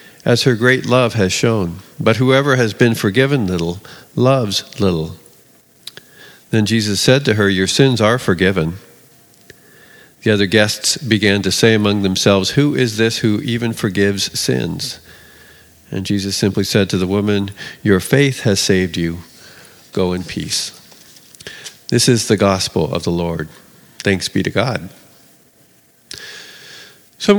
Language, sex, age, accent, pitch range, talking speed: English, male, 50-69, American, 100-135 Hz, 145 wpm